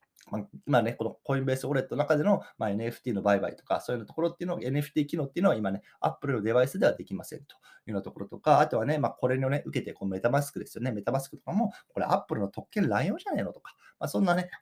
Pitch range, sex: 115-185 Hz, male